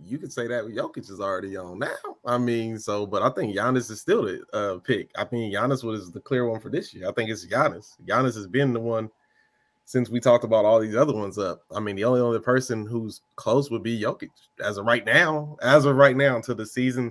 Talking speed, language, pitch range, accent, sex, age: 250 wpm, English, 105-130 Hz, American, male, 20-39